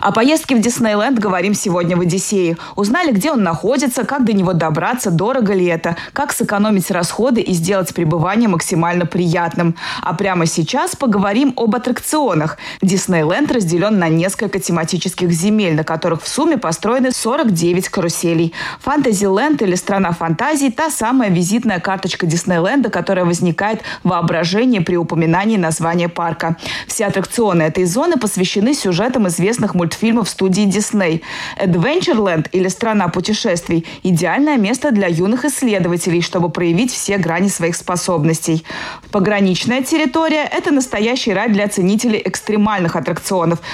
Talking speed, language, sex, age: 140 wpm, Russian, female, 20-39